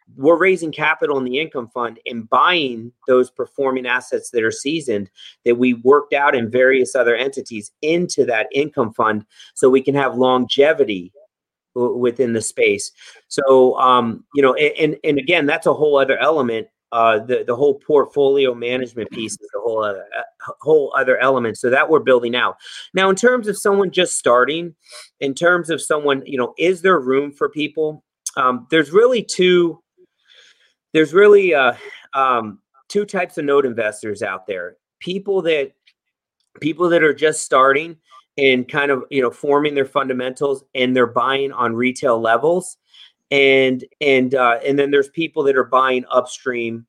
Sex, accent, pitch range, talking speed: male, American, 125-175 Hz, 170 wpm